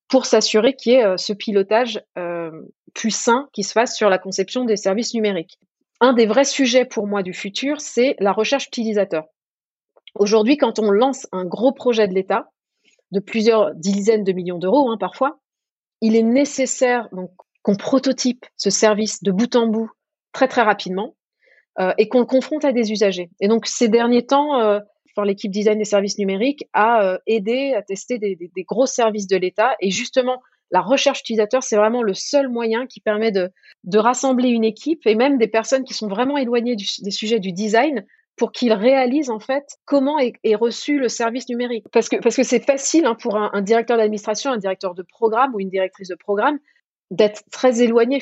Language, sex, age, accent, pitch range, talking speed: French, female, 30-49, French, 205-255 Hz, 195 wpm